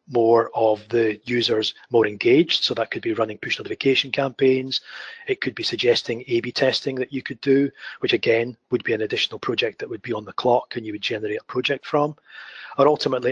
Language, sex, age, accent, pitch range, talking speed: English, male, 30-49, British, 115-150 Hz, 205 wpm